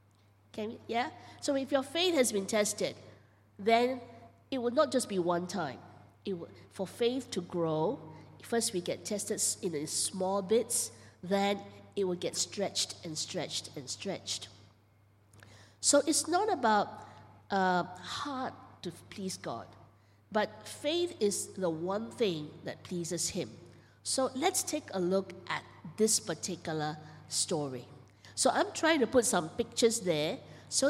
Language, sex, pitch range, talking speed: English, female, 170-255 Hz, 150 wpm